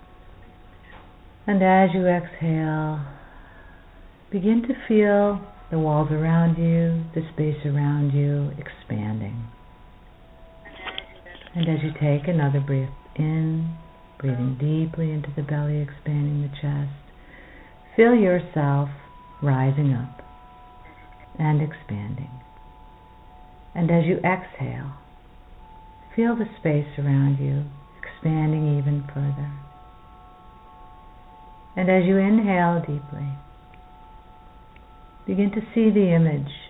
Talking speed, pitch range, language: 95 wpm, 125-165 Hz, English